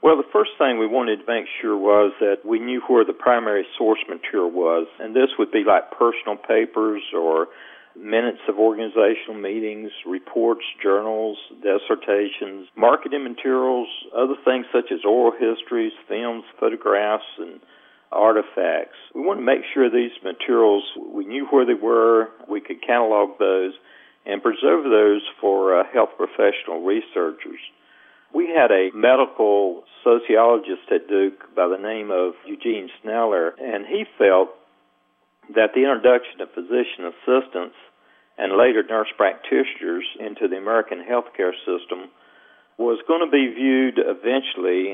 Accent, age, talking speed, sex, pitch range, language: American, 50-69, 145 wpm, male, 100-130 Hz, English